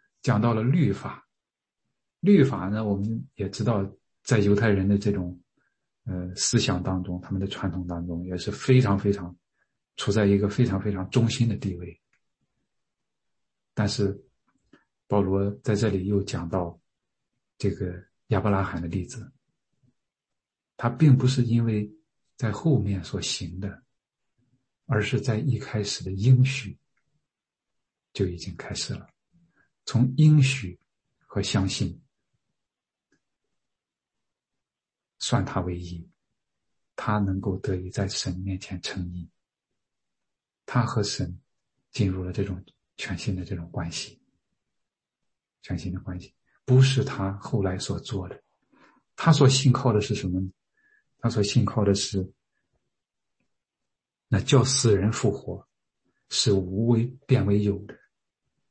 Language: English